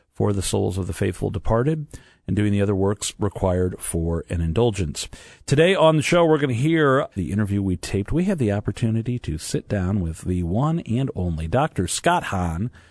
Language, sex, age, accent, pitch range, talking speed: English, male, 40-59, American, 90-120 Hz, 200 wpm